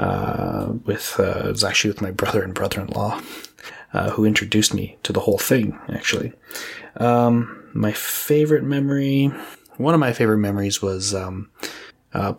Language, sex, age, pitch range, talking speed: English, male, 20-39, 100-115 Hz, 155 wpm